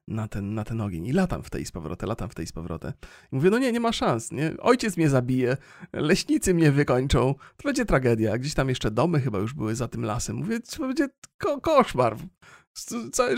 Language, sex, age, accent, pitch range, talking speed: Polish, male, 40-59, native, 120-165 Hz, 210 wpm